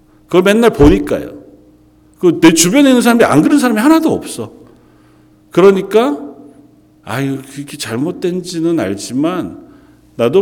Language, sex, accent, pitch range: Korean, male, native, 105-160 Hz